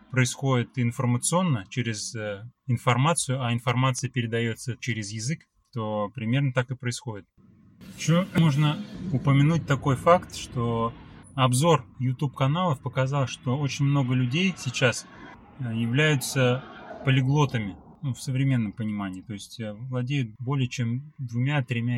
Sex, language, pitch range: male, Russian, 115-140 Hz